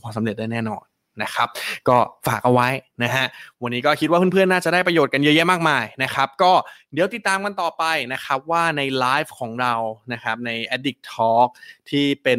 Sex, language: male, Thai